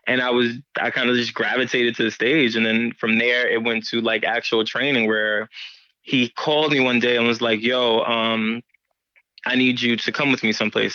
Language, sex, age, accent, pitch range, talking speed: English, male, 20-39, American, 110-125 Hz, 220 wpm